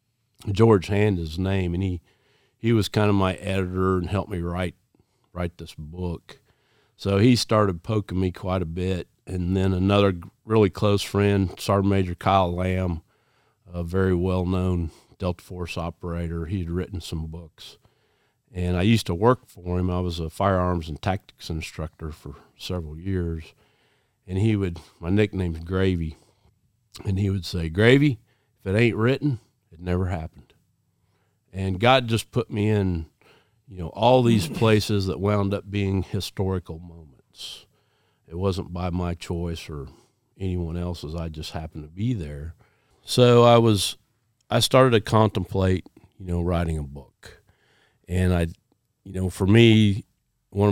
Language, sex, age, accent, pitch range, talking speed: English, male, 50-69, American, 90-110 Hz, 155 wpm